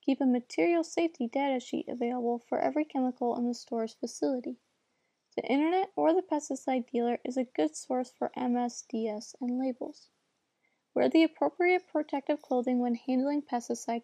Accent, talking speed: American, 155 wpm